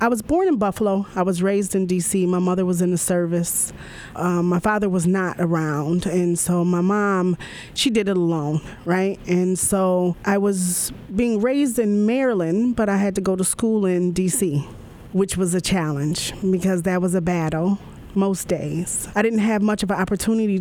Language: English